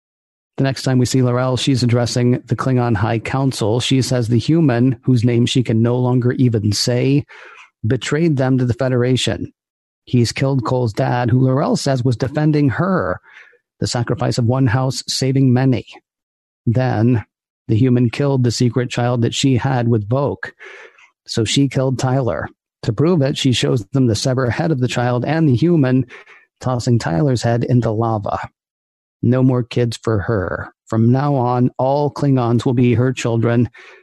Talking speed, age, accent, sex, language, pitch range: 170 wpm, 40-59, American, male, English, 115-130 Hz